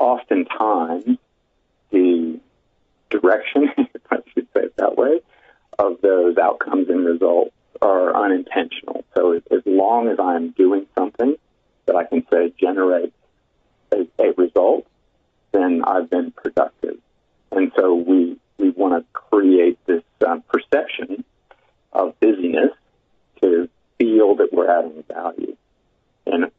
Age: 50-69